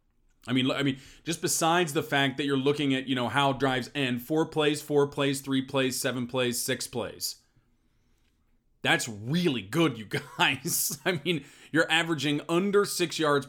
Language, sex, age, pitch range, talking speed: English, male, 20-39, 125-155 Hz, 175 wpm